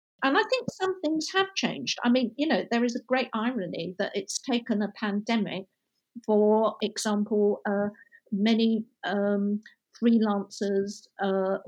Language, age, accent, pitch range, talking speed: English, 50-69, British, 185-220 Hz, 150 wpm